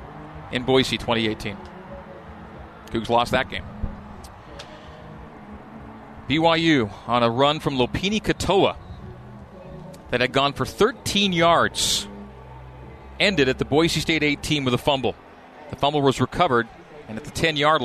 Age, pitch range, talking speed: 40-59, 110-155 Hz, 125 wpm